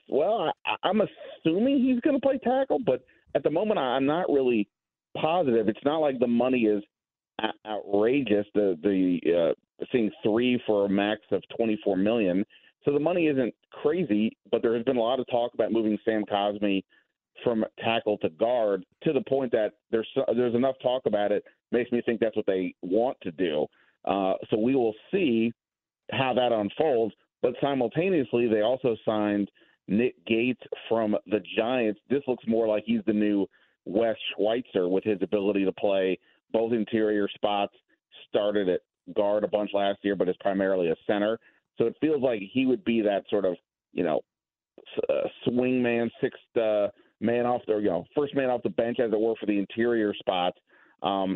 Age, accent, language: 40-59, American, English